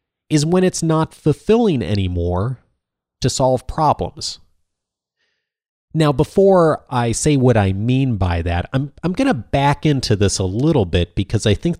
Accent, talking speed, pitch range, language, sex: American, 160 wpm, 90-120 Hz, English, male